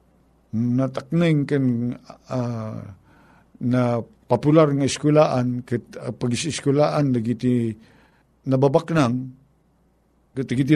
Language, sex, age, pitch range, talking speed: Filipino, male, 50-69, 120-155 Hz, 90 wpm